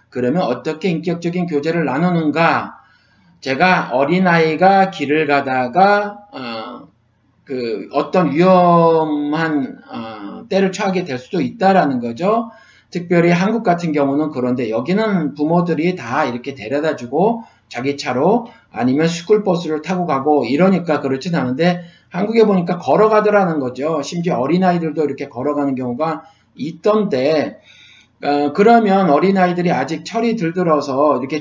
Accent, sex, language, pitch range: native, male, Korean, 145-195 Hz